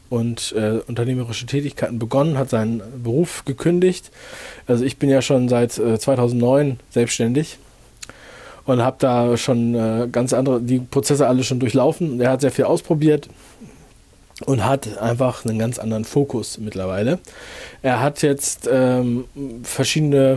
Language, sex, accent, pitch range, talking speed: German, male, German, 115-135 Hz, 140 wpm